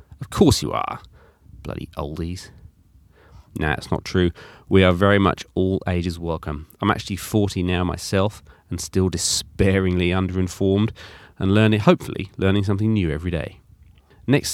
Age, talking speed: 30-49, 145 wpm